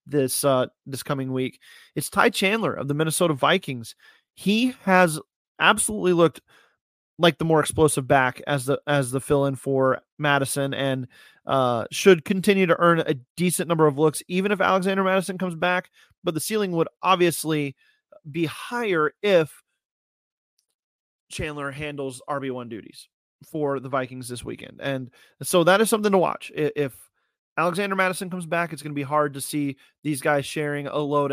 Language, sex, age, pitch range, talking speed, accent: English, male, 30-49, 140-170 Hz, 165 wpm, American